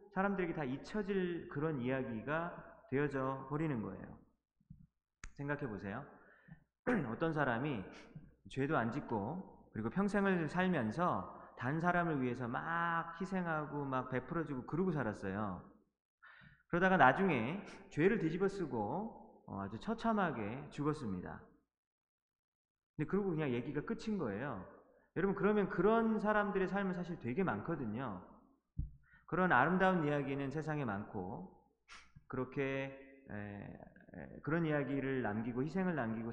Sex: male